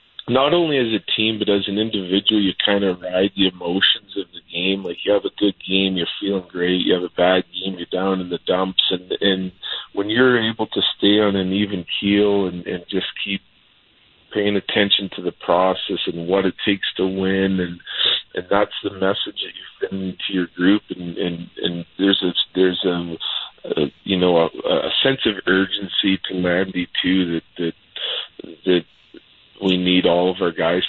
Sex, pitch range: male, 85-100 Hz